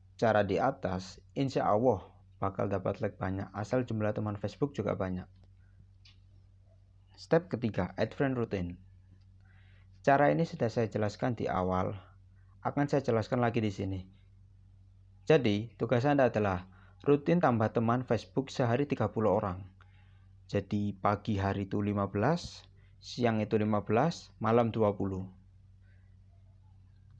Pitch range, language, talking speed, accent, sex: 95-120 Hz, Indonesian, 115 wpm, native, male